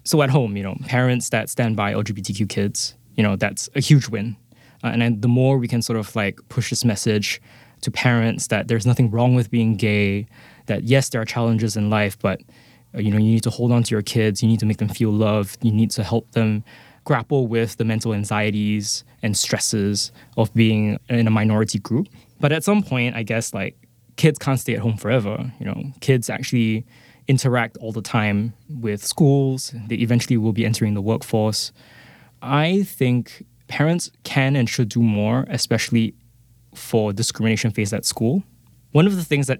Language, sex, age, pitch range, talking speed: English, male, 10-29, 110-125 Hz, 200 wpm